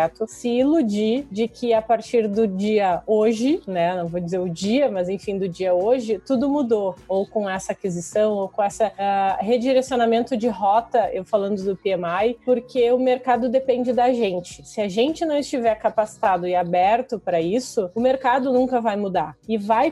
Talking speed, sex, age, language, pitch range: 180 wpm, female, 30-49, Portuguese, 205-255 Hz